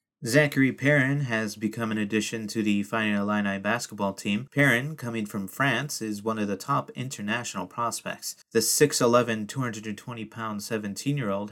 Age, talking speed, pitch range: 30-49, 140 wpm, 100-125 Hz